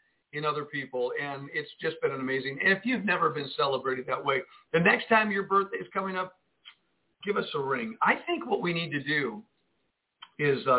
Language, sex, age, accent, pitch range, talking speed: English, male, 50-69, American, 160-210 Hz, 210 wpm